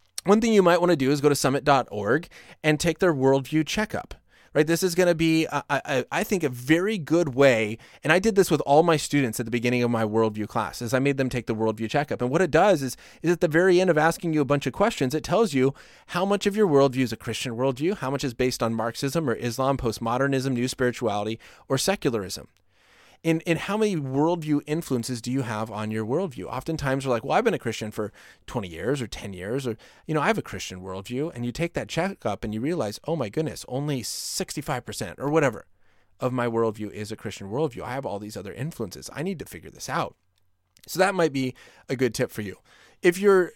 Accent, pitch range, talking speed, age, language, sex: American, 115-160 Hz, 240 wpm, 30-49, English, male